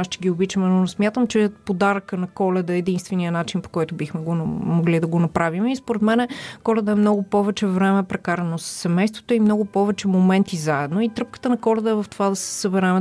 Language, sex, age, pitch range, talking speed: Bulgarian, female, 30-49, 180-215 Hz, 215 wpm